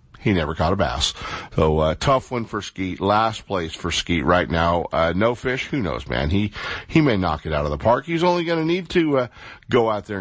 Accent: American